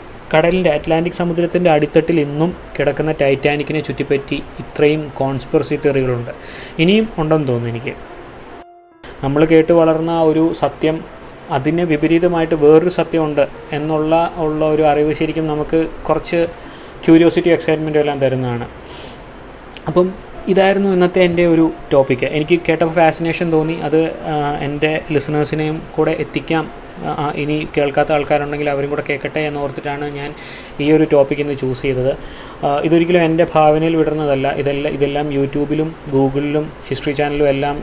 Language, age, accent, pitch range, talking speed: Malayalam, 20-39, native, 140-160 Hz, 120 wpm